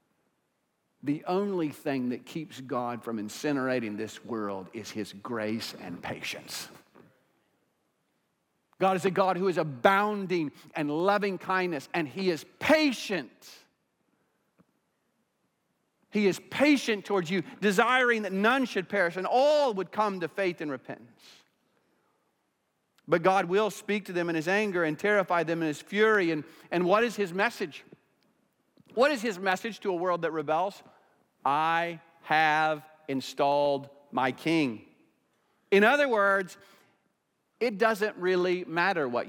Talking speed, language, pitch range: 135 wpm, English, 155-215 Hz